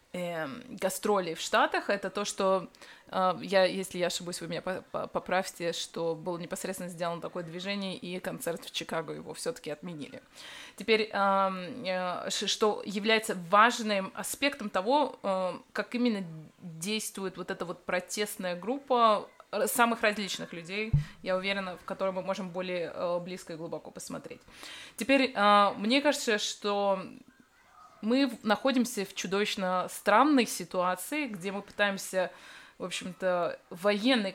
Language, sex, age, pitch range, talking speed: Russian, female, 20-39, 185-220 Hz, 130 wpm